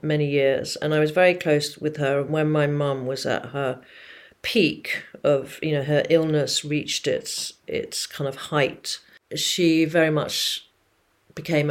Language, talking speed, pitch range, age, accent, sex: English, 160 wpm, 145-190 Hz, 40-59, British, female